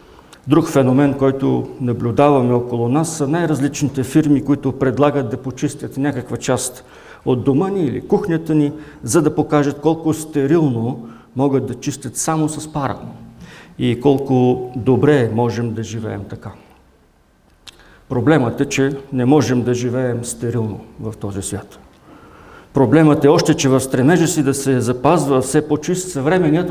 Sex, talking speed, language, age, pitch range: male, 140 wpm, English, 50-69, 120-150 Hz